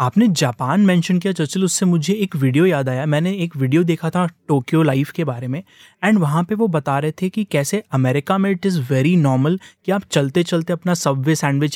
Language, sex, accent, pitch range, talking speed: English, male, Indian, 145-190 Hz, 225 wpm